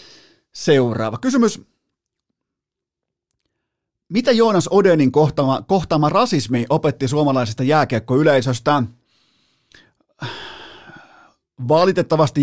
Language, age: Finnish, 30-49